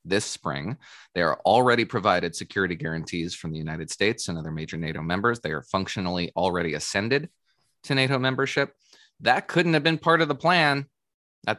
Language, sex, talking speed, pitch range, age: English, male, 175 wpm, 85-120 Hz, 20-39